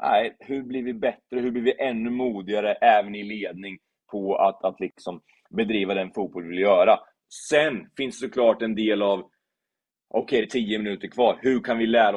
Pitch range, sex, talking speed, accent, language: 95-120 Hz, male, 200 wpm, native, Swedish